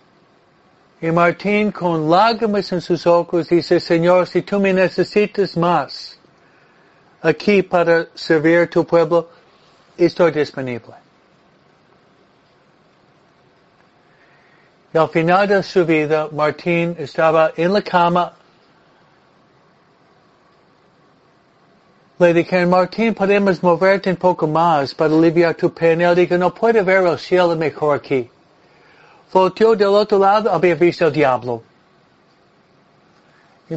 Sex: male